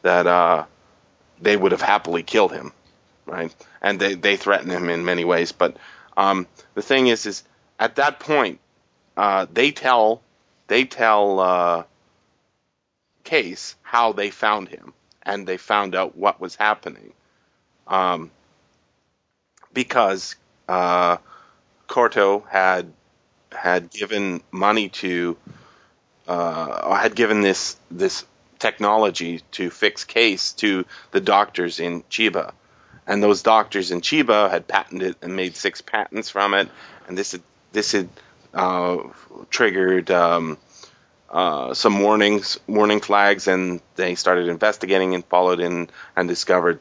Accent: American